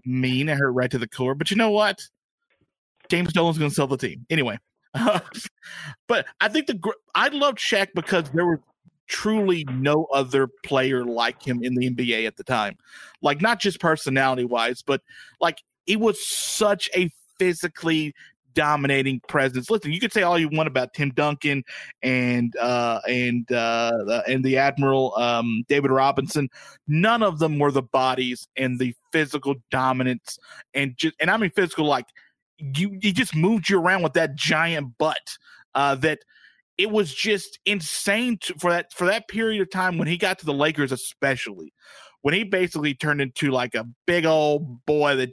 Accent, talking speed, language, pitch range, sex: American, 170 wpm, English, 130-180 Hz, male